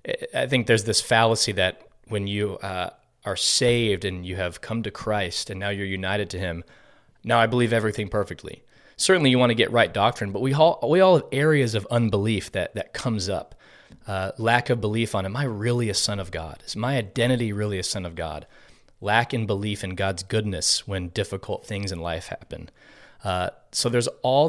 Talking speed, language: 205 wpm, English